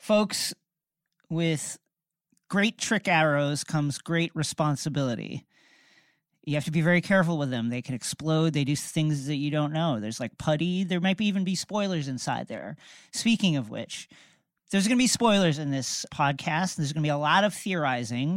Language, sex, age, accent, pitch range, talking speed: English, male, 40-59, American, 135-200 Hz, 180 wpm